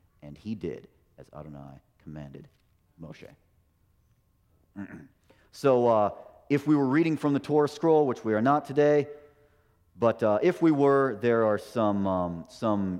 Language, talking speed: English, 150 wpm